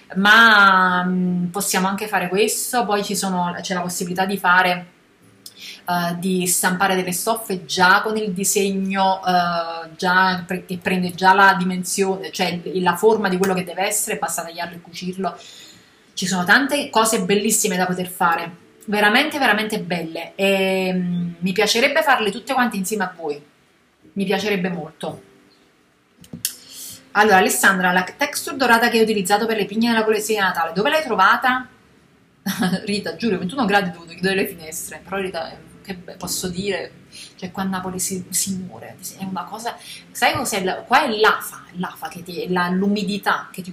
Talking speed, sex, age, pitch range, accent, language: 165 wpm, female, 30-49, 180-210 Hz, native, Italian